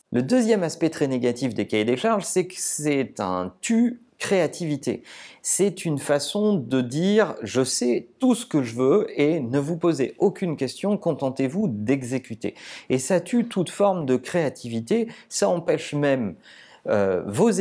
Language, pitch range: French, 125-185 Hz